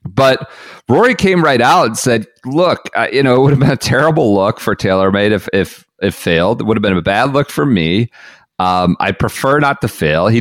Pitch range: 110-150 Hz